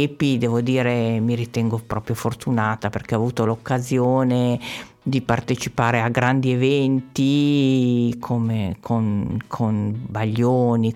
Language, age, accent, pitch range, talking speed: Italian, 50-69, native, 120-150 Hz, 105 wpm